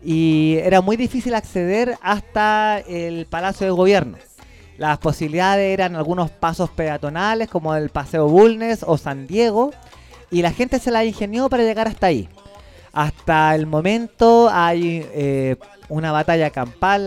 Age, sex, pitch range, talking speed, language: 30-49, male, 155-195 Hz, 145 wpm, Spanish